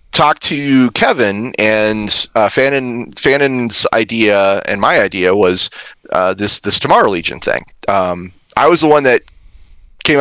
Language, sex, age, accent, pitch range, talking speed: English, male, 30-49, American, 105-140 Hz, 145 wpm